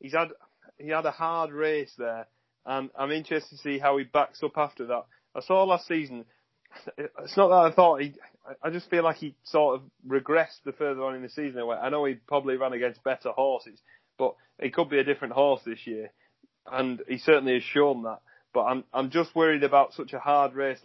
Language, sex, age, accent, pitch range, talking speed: English, male, 30-49, British, 120-145 Hz, 220 wpm